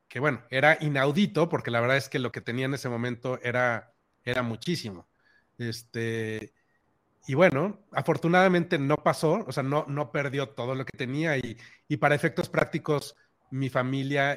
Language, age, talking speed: Spanish, 30-49, 165 wpm